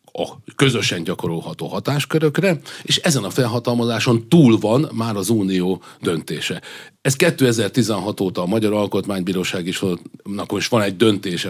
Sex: male